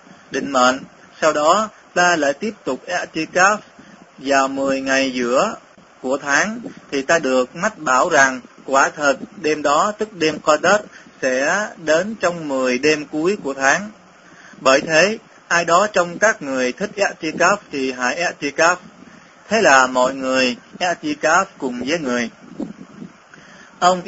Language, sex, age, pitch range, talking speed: Vietnamese, male, 20-39, 135-190 Hz, 145 wpm